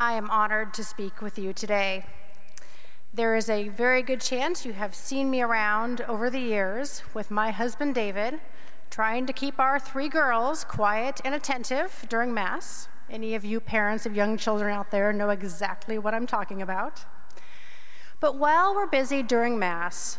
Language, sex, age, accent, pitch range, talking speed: English, female, 40-59, American, 205-265 Hz, 170 wpm